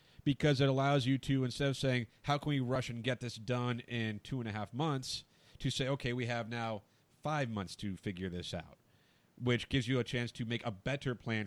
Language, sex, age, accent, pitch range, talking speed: English, male, 30-49, American, 110-140 Hz, 230 wpm